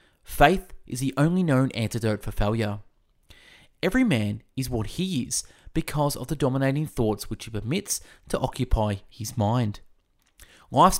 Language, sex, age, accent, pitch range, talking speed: English, male, 30-49, Australian, 110-150 Hz, 145 wpm